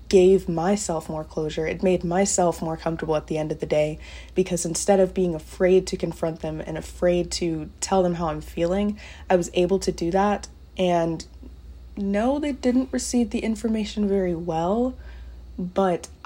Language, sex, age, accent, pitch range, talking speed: English, female, 20-39, American, 160-200 Hz, 175 wpm